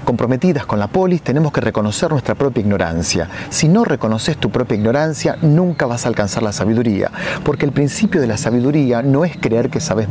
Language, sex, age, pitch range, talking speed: Spanish, male, 30-49, 110-155 Hz, 195 wpm